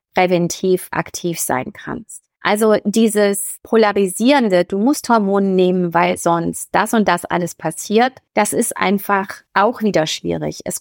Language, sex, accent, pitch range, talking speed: German, female, German, 175-215 Hz, 140 wpm